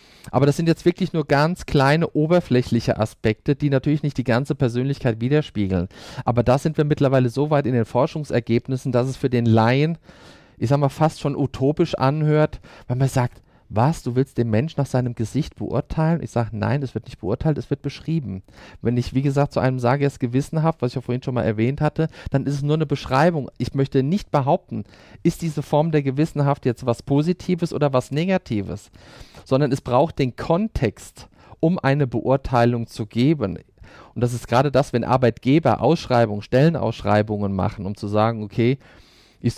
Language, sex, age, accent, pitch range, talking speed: German, male, 40-59, German, 115-145 Hz, 190 wpm